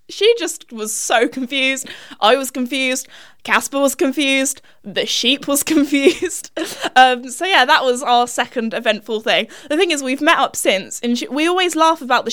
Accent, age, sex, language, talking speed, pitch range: British, 10-29, female, English, 185 wpm, 225-295 Hz